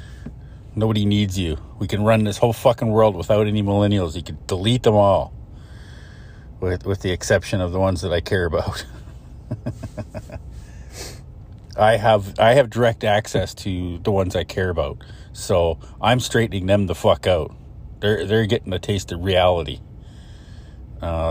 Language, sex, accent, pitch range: English, male, American, 90-110 Hz